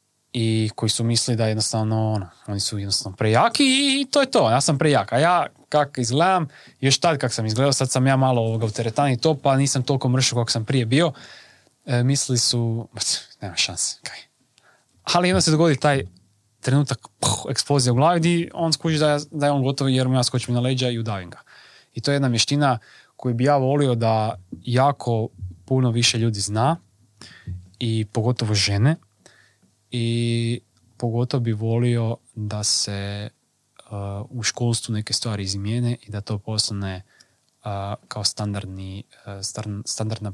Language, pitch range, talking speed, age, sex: Croatian, 105-130 Hz, 175 wpm, 20-39, male